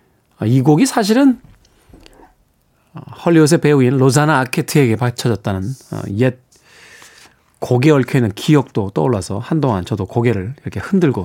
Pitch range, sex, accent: 125-170 Hz, male, native